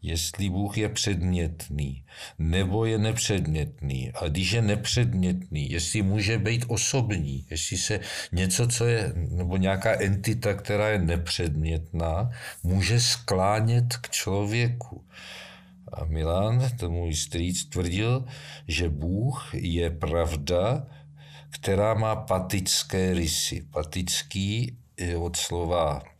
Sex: male